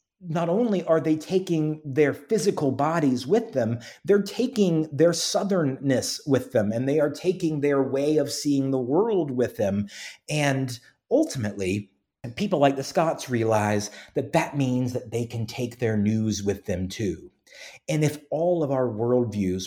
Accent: American